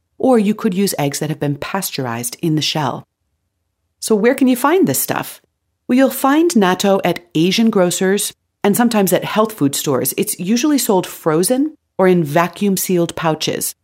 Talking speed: 175 wpm